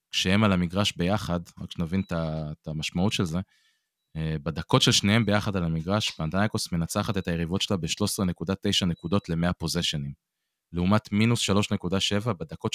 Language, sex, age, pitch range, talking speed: Hebrew, male, 20-39, 80-100 Hz, 135 wpm